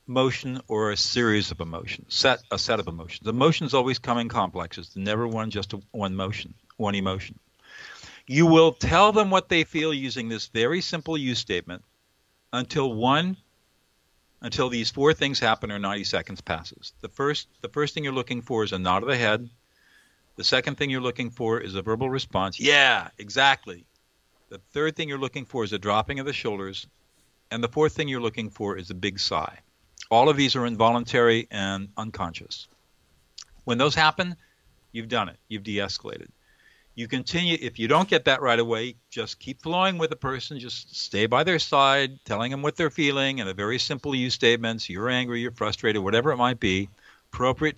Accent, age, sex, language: American, 50-69, male, English